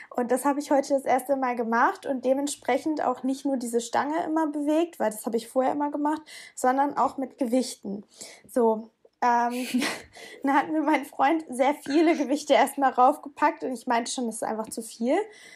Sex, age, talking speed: female, 20-39, 195 wpm